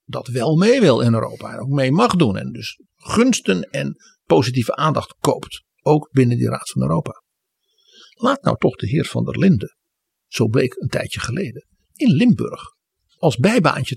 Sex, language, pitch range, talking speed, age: male, Dutch, 115-190 Hz, 175 wpm, 60-79